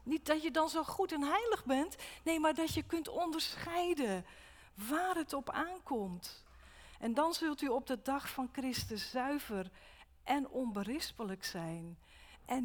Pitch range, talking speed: 195-285 Hz, 155 wpm